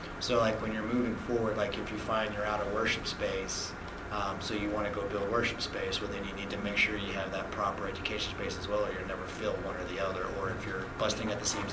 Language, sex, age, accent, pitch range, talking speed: English, male, 30-49, American, 100-115 Hz, 275 wpm